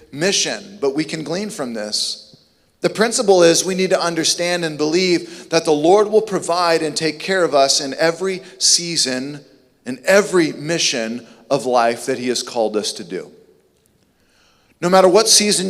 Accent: American